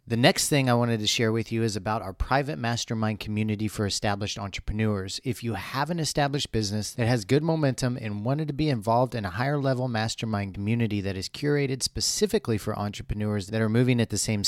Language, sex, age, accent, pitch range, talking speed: English, male, 40-59, American, 105-140 Hz, 210 wpm